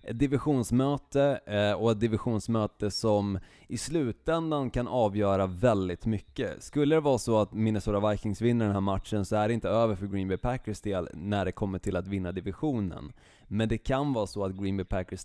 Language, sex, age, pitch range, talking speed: Swedish, male, 20-39, 95-115 Hz, 195 wpm